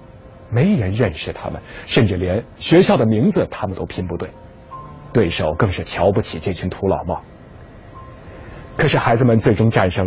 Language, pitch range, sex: Chinese, 95-130 Hz, male